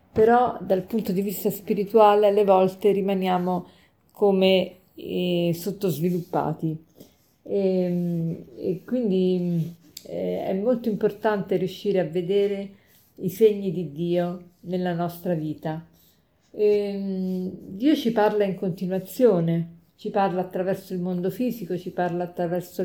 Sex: female